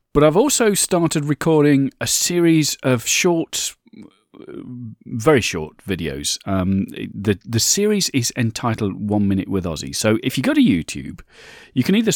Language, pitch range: English, 95-135 Hz